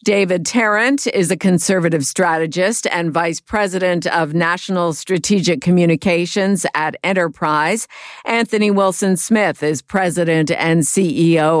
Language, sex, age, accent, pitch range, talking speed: English, female, 50-69, American, 165-200 Hz, 110 wpm